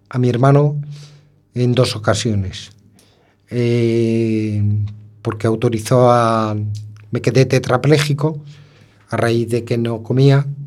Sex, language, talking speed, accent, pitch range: male, Spanish, 105 wpm, Spanish, 110-135 Hz